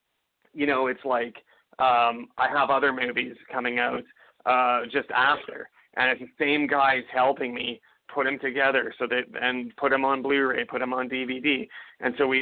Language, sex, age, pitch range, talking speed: English, male, 30-49, 130-150 Hz, 185 wpm